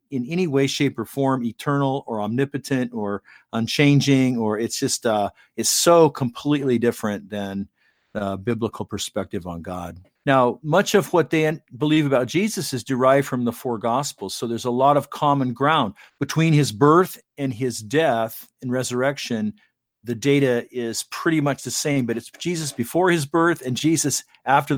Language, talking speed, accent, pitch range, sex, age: English, 170 wpm, American, 115-145 Hz, male, 50-69